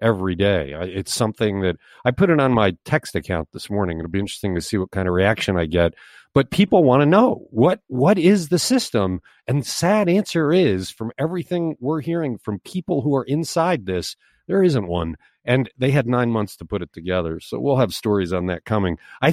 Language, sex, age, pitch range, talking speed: English, male, 50-69, 110-165 Hz, 215 wpm